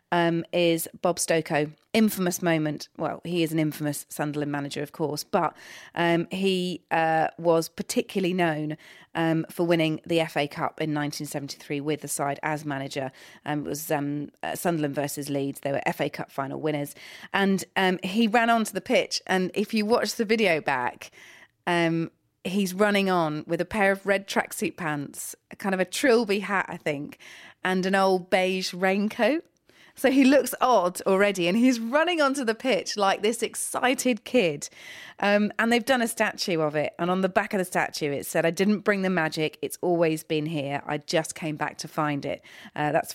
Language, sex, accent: English, female, British